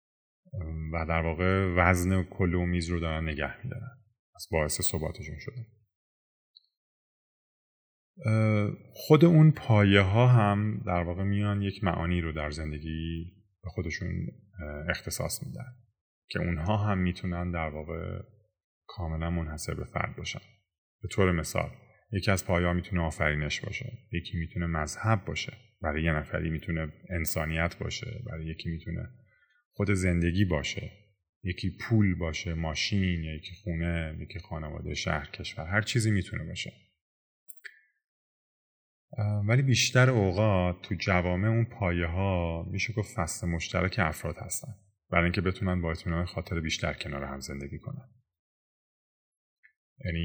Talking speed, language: 130 wpm, Persian